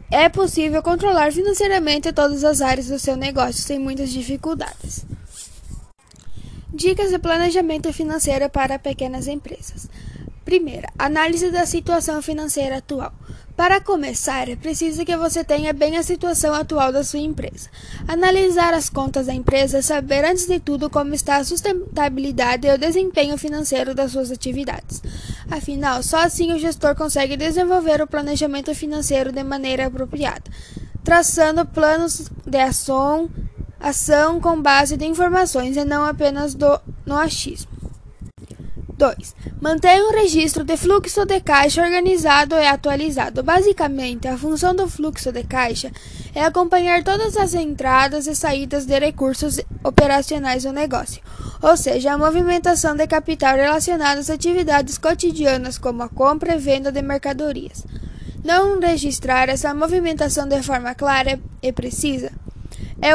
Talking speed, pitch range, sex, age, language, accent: 140 wpm, 275-335 Hz, female, 10-29, Portuguese, Brazilian